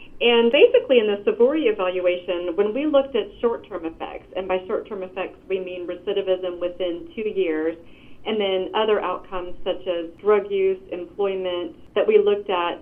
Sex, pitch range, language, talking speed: female, 180-220 Hz, English, 175 wpm